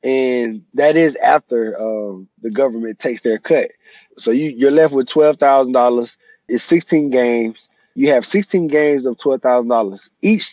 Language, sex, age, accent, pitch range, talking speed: English, male, 20-39, American, 125-160 Hz, 150 wpm